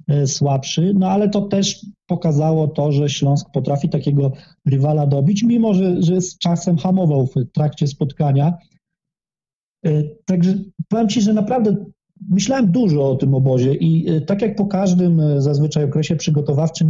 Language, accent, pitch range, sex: Polish, native, 150-185 Hz, male